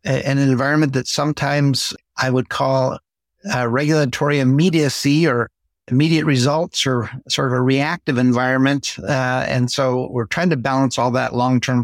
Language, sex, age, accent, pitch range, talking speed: English, male, 50-69, American, 120-145 Hz, 145 wpm